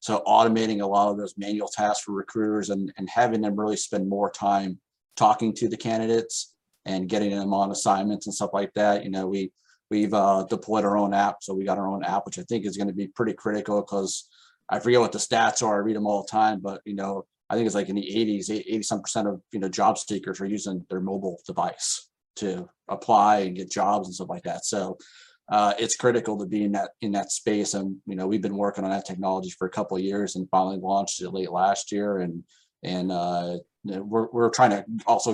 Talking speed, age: 235 wpm, 40-59